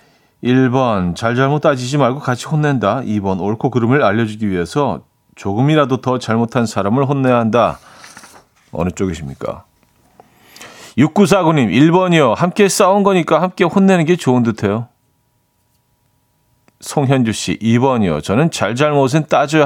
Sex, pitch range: male, 115-155 Hz